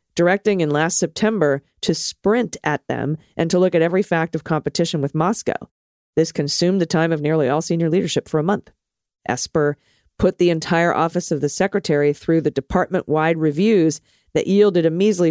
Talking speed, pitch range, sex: 185 wpm, 140-175 Hz, female